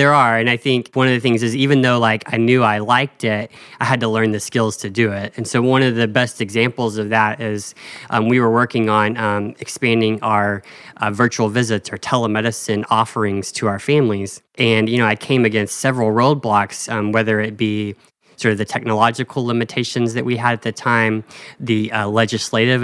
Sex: male